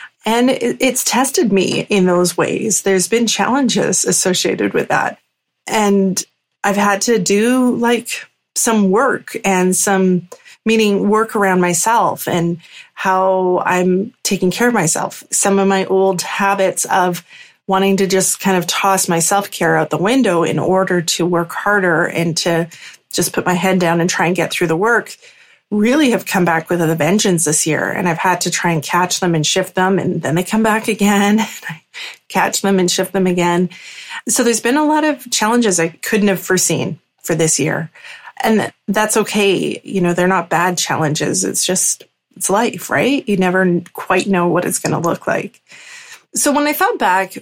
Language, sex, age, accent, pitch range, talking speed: English, female, 30-49, American, 180-220 Hz, 185 wpm